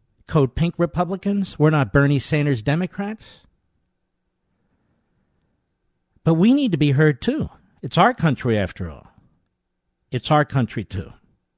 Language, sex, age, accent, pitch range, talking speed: English, male, 60-79, American, 105-150 Hz, 125 wpm